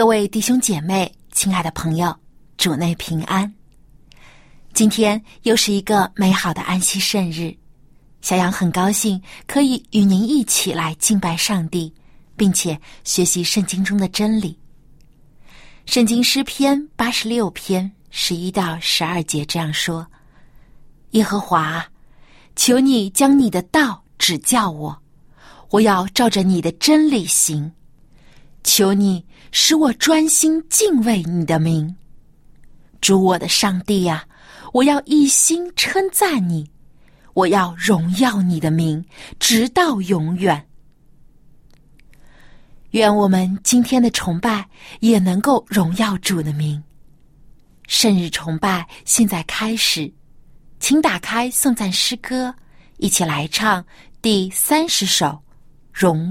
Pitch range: 155-220 Hz